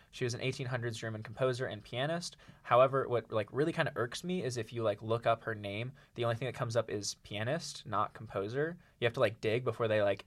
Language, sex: English, male